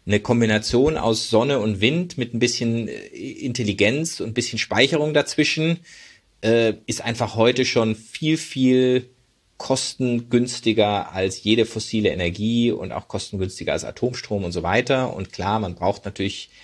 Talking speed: 145 wpm